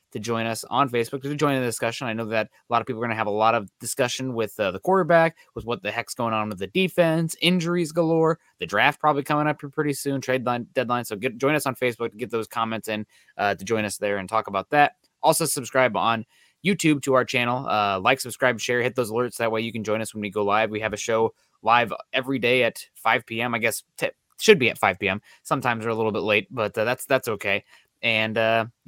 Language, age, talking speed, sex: English, 20-39, 260 wpm, male